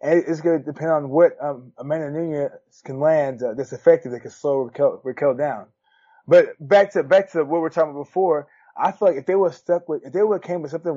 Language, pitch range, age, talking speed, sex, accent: English, 145-185 Hz, 20-39, 250 wpm, male, American